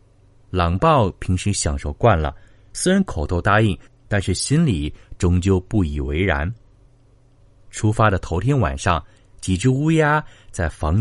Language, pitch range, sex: Chinese, 90-125 Hz, male